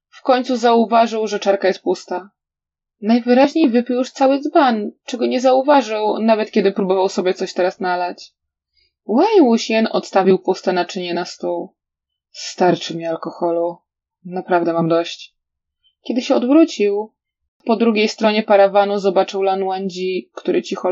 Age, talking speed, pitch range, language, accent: 20-39, 135 wpm, 185-240 Hz, Polish, native